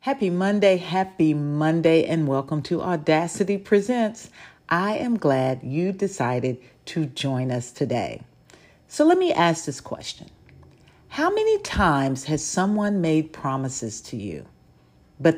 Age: 50-69